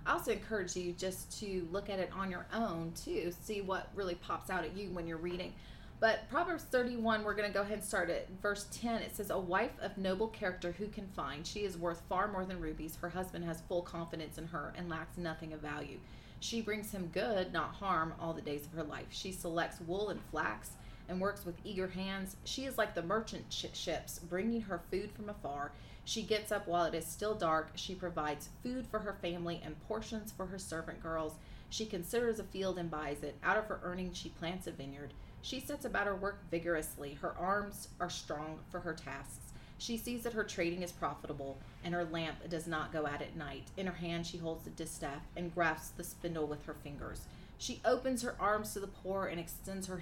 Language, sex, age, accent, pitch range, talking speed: English, female, 30-49, American, 160-200 Hz, 220 wpm